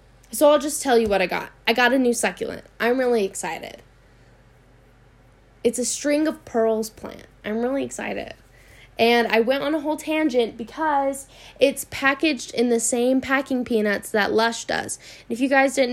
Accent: American